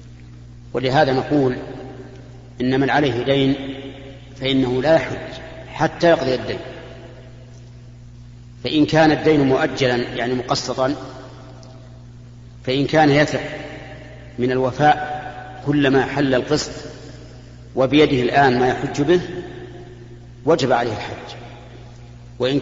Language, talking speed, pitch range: Arabic, 95 wpm, 120-140 Hz